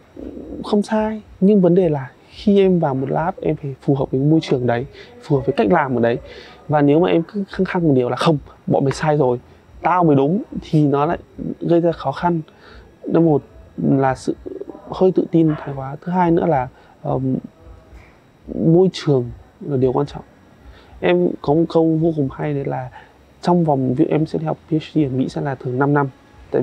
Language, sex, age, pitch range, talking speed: Vietnamese, male, 20-39, 135-175 Hz, 215 wpm